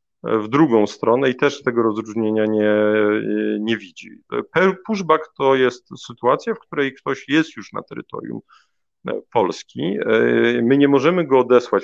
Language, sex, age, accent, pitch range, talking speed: Polish, male, 40-59, native, 110-140 Hz, 135 wpm